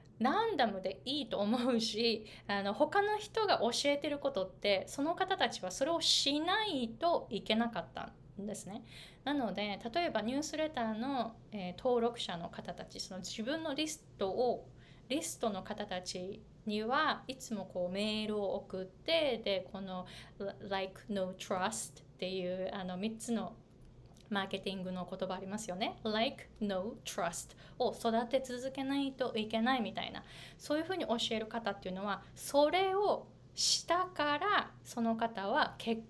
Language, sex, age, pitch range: Japanese, female, 20-39, 195-275 Hz